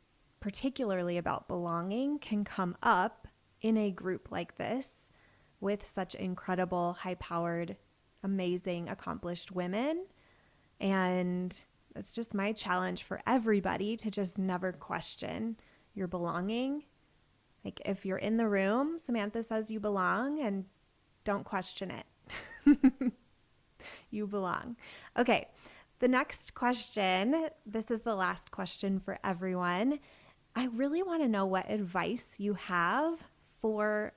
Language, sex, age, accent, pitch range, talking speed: English, female, 20-39, American, 185-240 Hz, 120 wpm